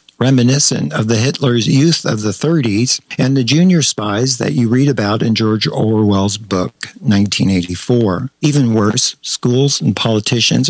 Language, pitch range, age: English, 110-135 Hz, 50-69